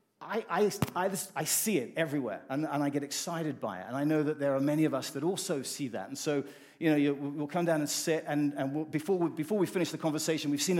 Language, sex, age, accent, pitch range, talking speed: English, male, 40-59, British, 140-180 Hz, 265 wpm